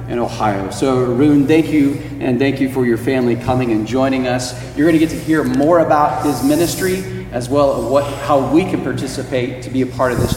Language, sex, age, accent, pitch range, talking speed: English, male, 40-59, American, 120-145 Hz, 230 wpm